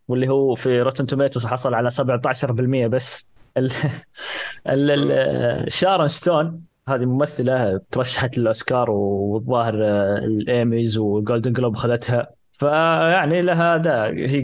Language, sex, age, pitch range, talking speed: Arabic, male, 20-39, 120-155 Hz, 110 wpm